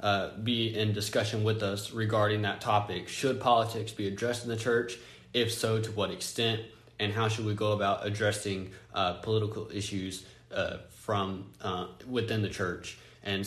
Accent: American